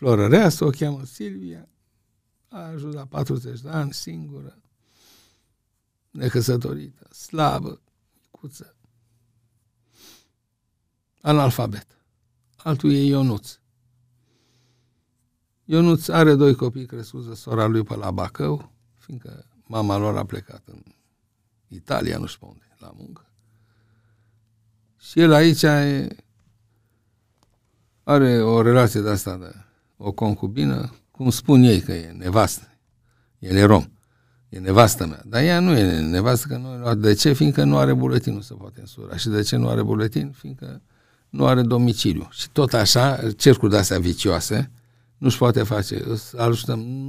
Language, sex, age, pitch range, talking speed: Romanian, male, 60-79, 105-125 Hz, 125 wpm